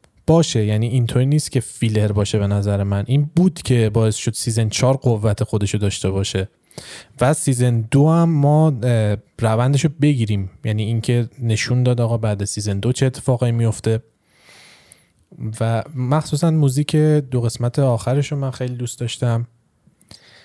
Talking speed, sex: 145 wpm, male